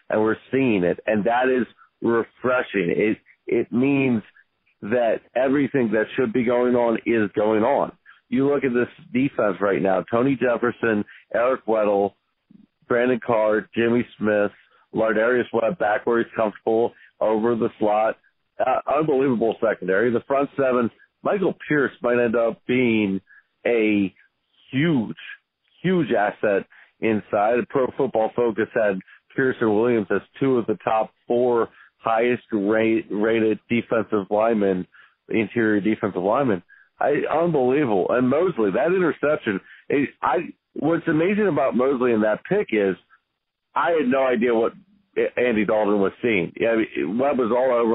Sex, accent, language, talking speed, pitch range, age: male, American, English, 145 wpm, 105-125 Hz, 40-59